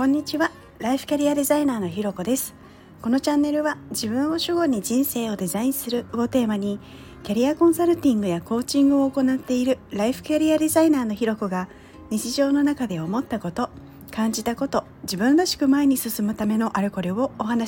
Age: 40-59